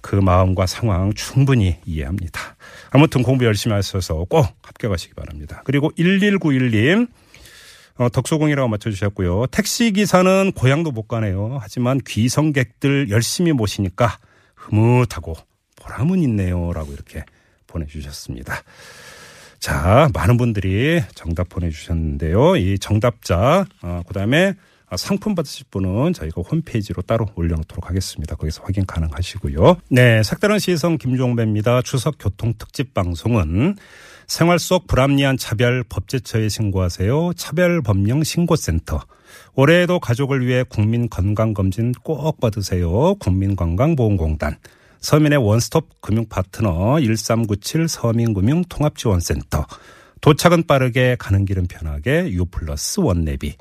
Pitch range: 95-140 Hz